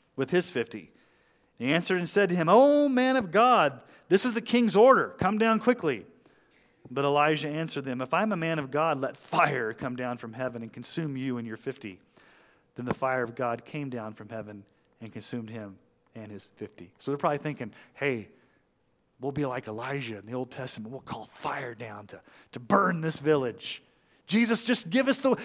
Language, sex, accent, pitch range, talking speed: English, male, American, 115-160 Hz, 205 wpm